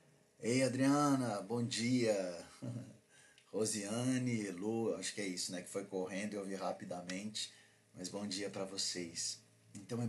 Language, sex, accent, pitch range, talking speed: Portuguese, male, Brazilian, 95-115 Hz, 145 wpm